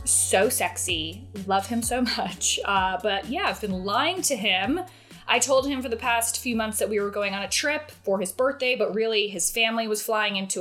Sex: female